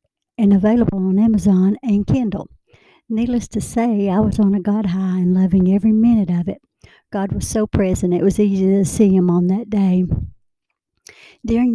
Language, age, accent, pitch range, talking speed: English, 60-79, American, 190-220 Hz, 180 wpm